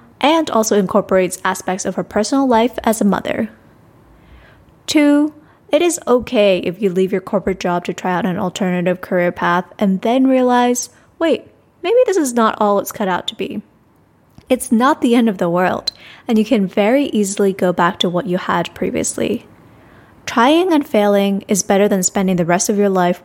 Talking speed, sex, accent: 190 wpm, female, American